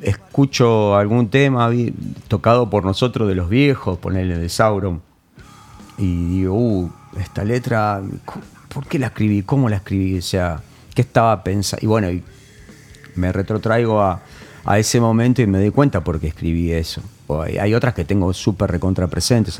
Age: 40-59